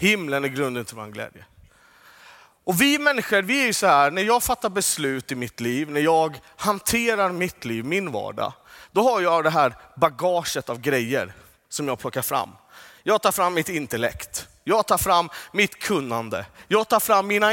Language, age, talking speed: Swedish, 30-49, 185 wpm